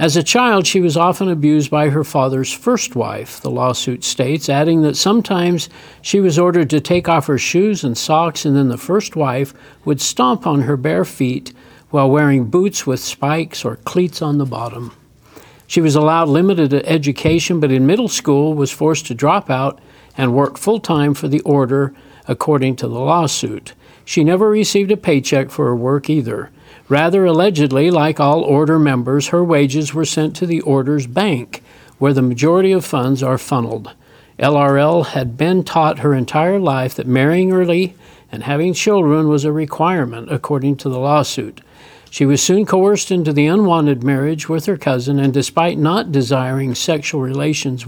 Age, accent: 60-79, American